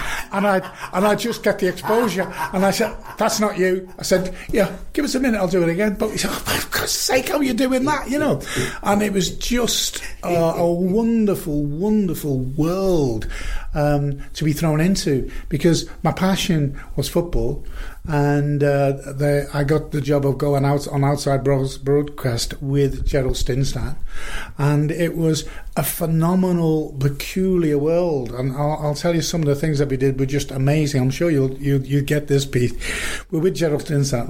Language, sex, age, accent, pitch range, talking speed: English, male, 50-69, British, 135-180 Hz, 185 wpm